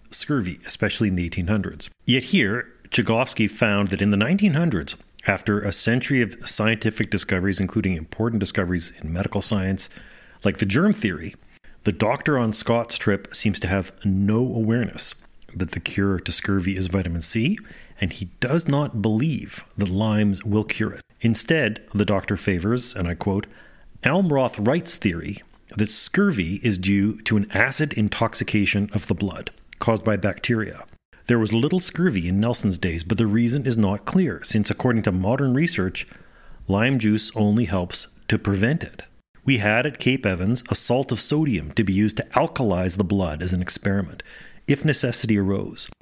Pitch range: 100-120 Hz